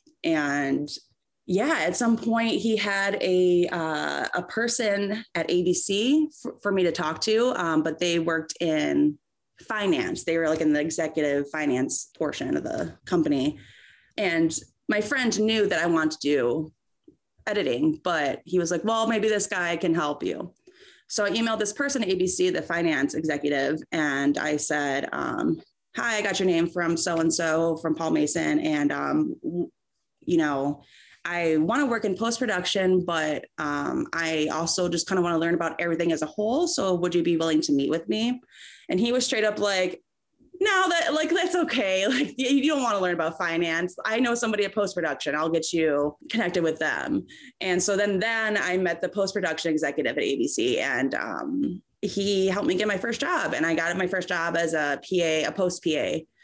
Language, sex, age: English, female, 20-39